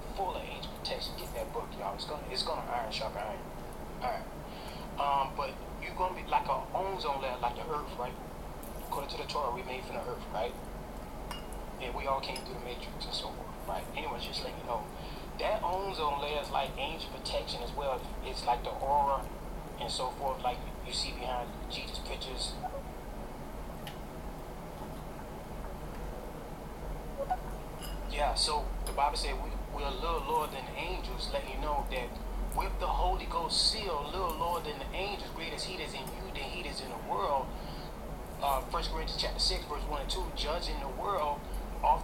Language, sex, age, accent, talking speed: English, male, 30-49, American, 185 wpm